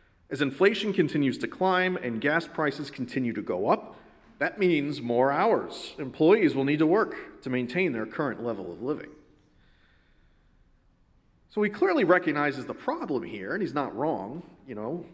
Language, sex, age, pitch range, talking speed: English, male, 40-59, 120-160 Hz, 165 wpm